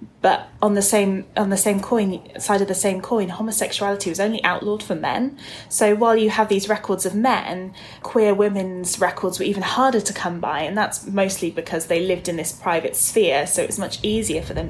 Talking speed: 215 wpm